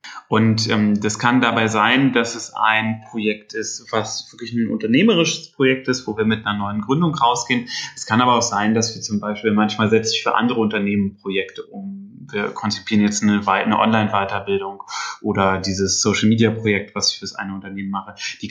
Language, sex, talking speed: German, male, 185 wpm